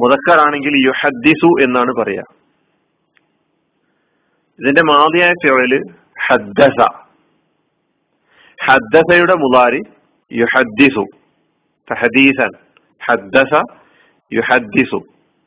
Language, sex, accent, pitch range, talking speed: Malayalam, male, native, 130-155 Hz, 40 wpm